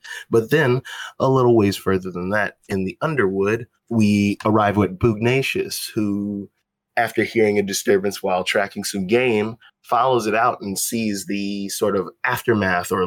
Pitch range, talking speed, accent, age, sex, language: 95-110 Hz, 155 wpm, American, 20-39, male, English